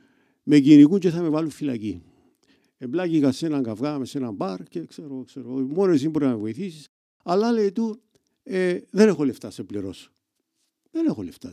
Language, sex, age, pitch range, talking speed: Greek, male, 50-69, 140-215 Hz, 175 wpm